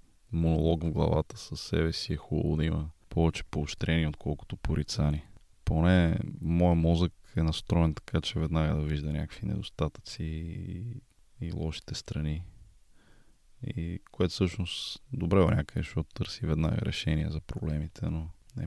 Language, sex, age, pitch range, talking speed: Bulgarian, male, 20-39, 80-95 Hz, 140 wpm